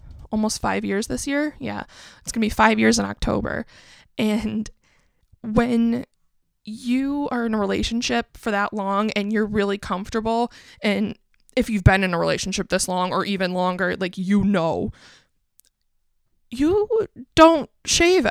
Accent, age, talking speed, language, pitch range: American, 20-39, 150 wpm, English, 205-270 Hz